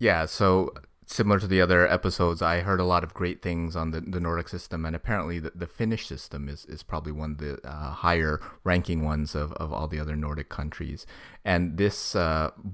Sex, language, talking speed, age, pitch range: male, English, 205 wpm, 30-49, 75-90 Hz